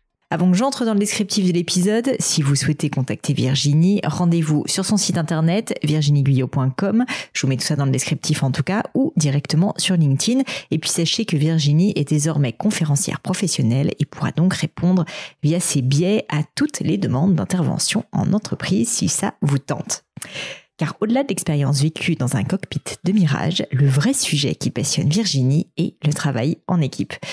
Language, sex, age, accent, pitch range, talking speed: French, female, 40-59, French, 140-185 Hz, 180 wpm